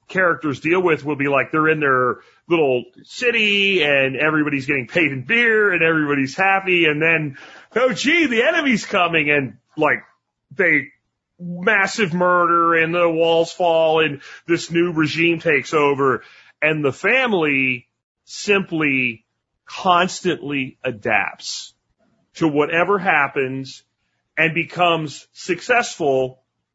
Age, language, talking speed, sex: 40-59, English, 120 wpm, male